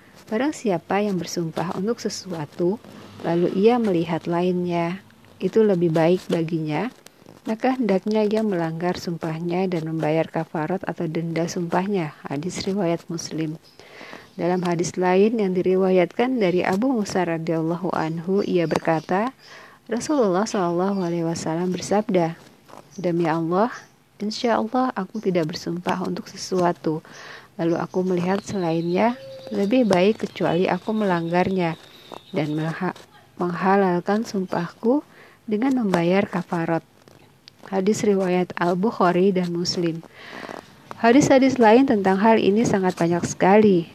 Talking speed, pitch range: 110 wpm, 170-205 Hz